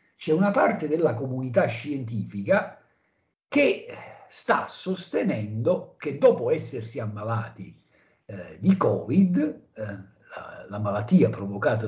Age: 50-69